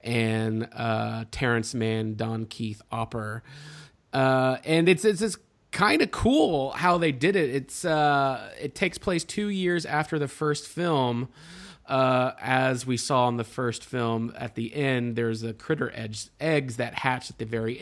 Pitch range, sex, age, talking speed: 120-160 Hz, male, 30-49, 170 wpm